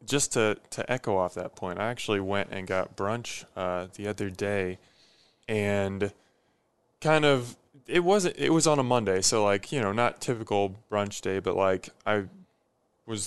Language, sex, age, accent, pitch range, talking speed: English, male, 20-39, American, 105-135 Hz, 175 wpm